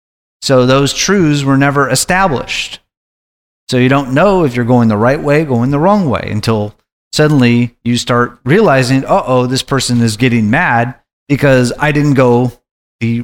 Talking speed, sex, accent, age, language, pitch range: 170 wpm, male, American, 30-49, English, 115-140 Hz